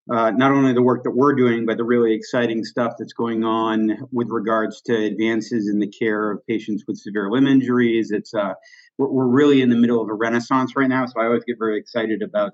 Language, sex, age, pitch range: English, male, 50-69, 110-130 Hz